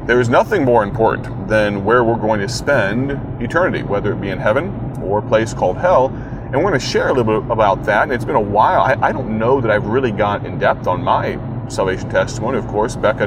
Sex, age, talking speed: male, 30-49, 240 wpm